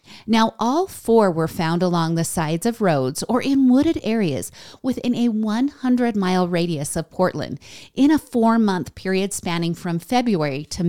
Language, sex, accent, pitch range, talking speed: English, female, American, 150-240 Hz, 155 wpm